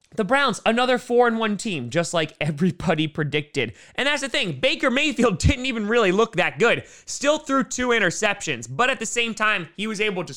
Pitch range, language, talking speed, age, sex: 140-210 Hz, English, 205 wpm, 20-39, male